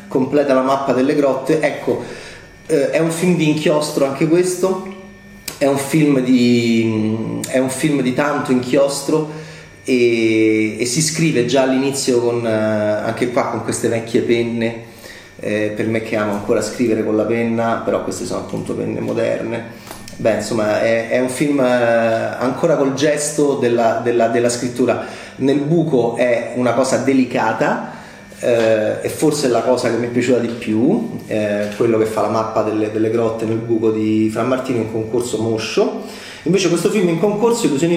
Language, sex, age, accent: Italian, male, 30-49, native